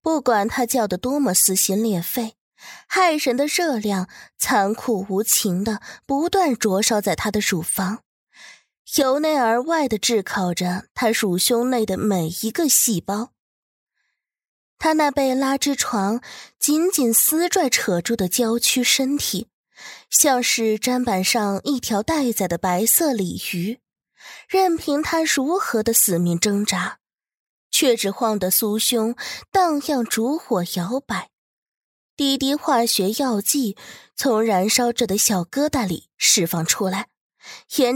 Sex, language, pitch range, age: female, Chinese, 200-275 Hz, 20-39